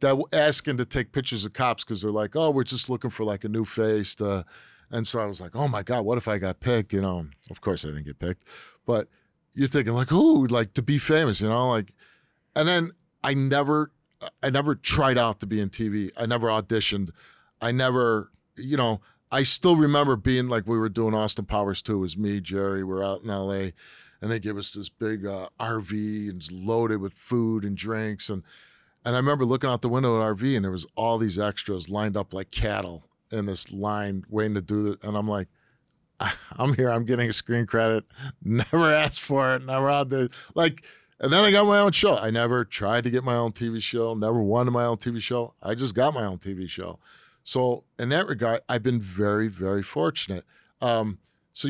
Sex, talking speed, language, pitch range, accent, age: male, 225 wpm, English, 100-130 Hz, American, 40-59